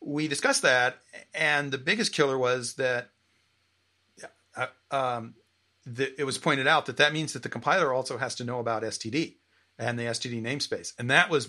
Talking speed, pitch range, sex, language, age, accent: 180 wpm, 115-150 Hz, male, English, 40-59, American